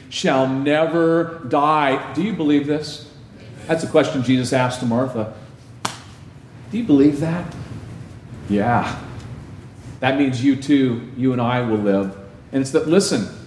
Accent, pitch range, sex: American, 125-180 Hz, male